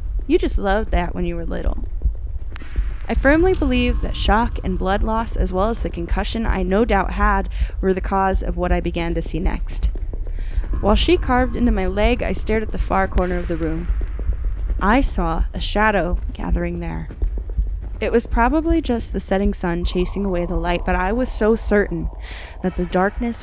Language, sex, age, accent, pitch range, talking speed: English, female, 10-29, American, 165-210 Hz, 190 wpm